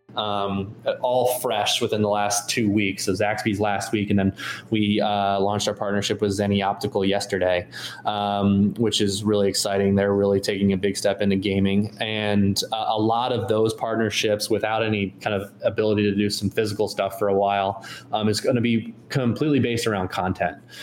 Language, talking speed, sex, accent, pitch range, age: English, 185 wpm, male, American, 100-115 Hz, 20-39